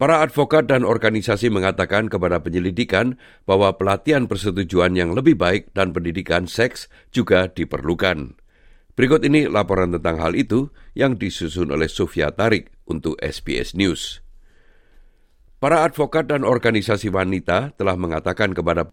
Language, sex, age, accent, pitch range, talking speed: Indonesian, male, 50-69, native, 90-120 Hz, 125 wpm